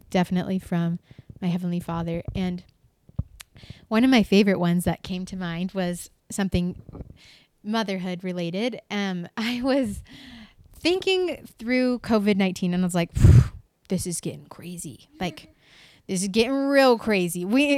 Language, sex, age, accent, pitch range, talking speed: English, female, 20-39, American, 175-215 Hz, 135 wpm